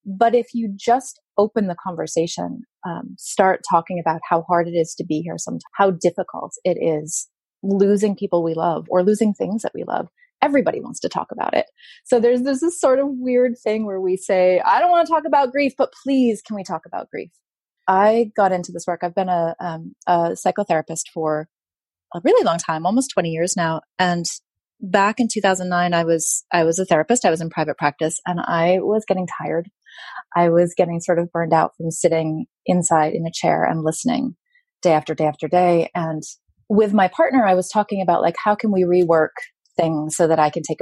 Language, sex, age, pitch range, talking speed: English, female, 30-49, 165-210 Hz, 210 wpm